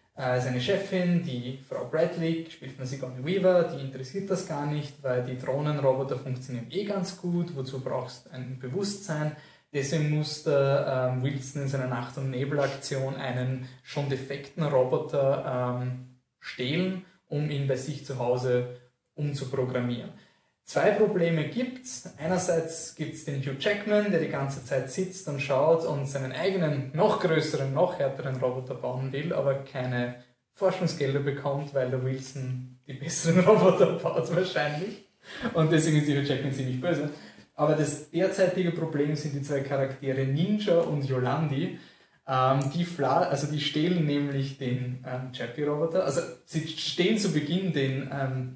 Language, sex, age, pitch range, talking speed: German, male, 20-39, 130-165 Hz, 150 wpm